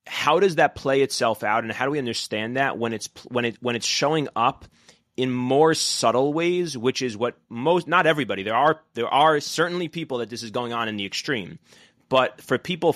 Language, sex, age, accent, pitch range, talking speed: English, male, 30-49, American, 110-130 Hz, 220 wpm